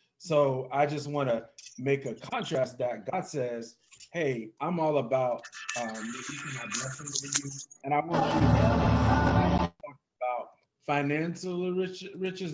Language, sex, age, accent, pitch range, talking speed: English, male, 30-49, American, 125-150 Hz, 130 wpm